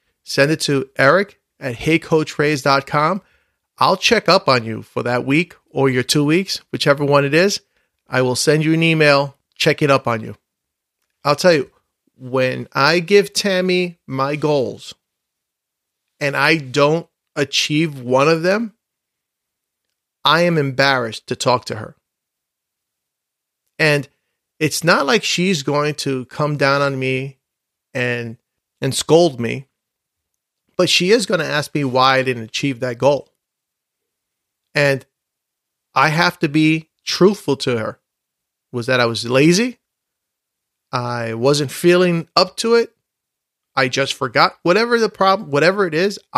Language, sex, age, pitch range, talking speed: English, male, 40-59, 130-170 Hz, 145 wpm